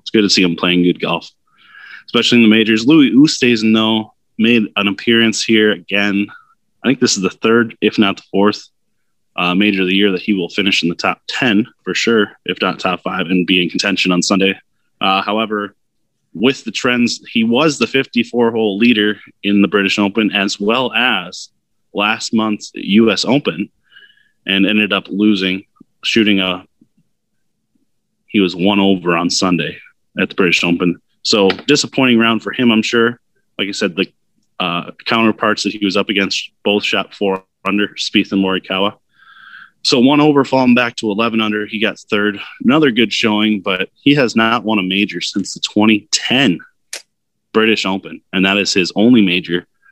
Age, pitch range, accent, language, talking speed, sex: 20-39, 95-110 Hz, American, English, 180 wpm, male